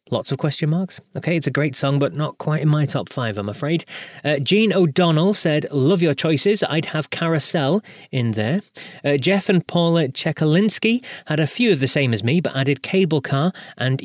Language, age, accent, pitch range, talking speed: English, 30-49, British, 125-170 Hz, 205 wpm